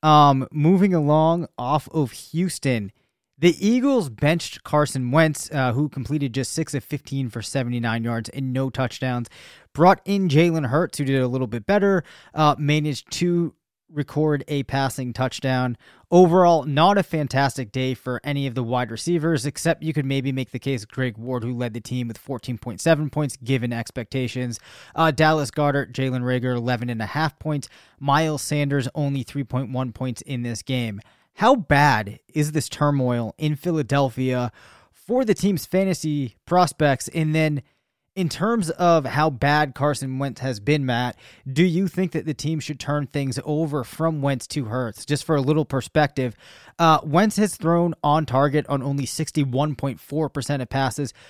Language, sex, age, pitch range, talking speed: English, male, 20-39, 130-160 Hz, 170 wpm